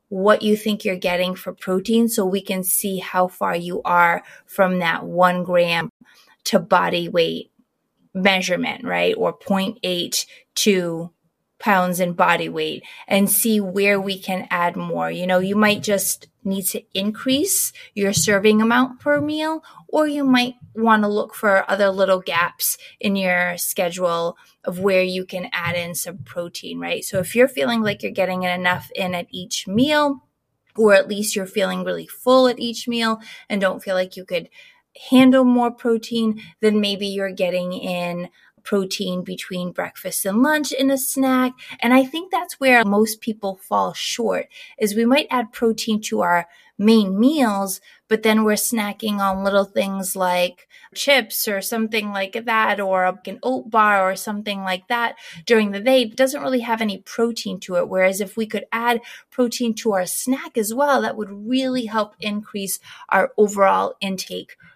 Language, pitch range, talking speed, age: English, 185-235 Hz, 170 wpm, 20-39